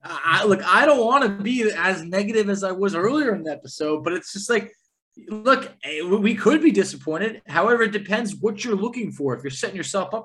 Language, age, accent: English, 20-39, American